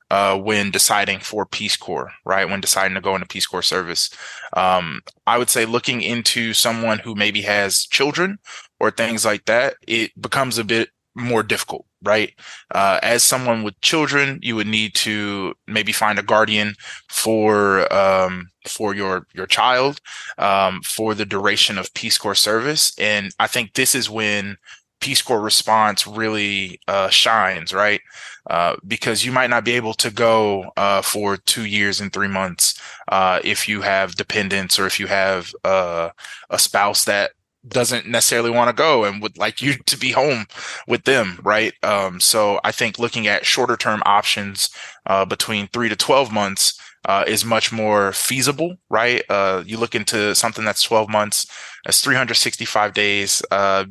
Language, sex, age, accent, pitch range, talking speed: English, male, 20-39, American, 100-115 Hz, 170 wpm